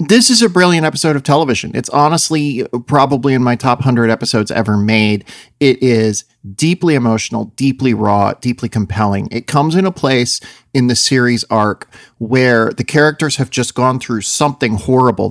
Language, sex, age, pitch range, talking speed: English, male, 40-59, 115-150 Hz, 170 wpm